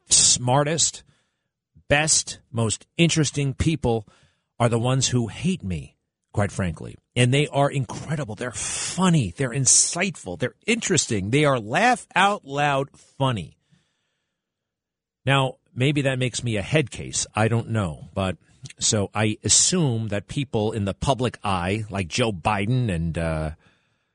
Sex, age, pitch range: male, 40-59, 95-140 Hz